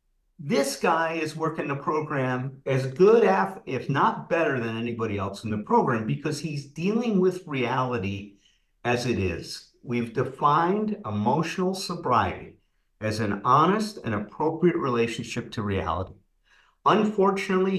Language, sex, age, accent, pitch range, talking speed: English, male, 50-69, American, 110-155 Hz, 130 wpm